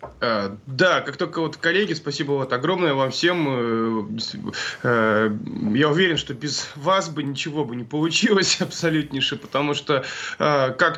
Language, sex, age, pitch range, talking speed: Russian, male, 20-39, 125-155 Hz, 130 wpm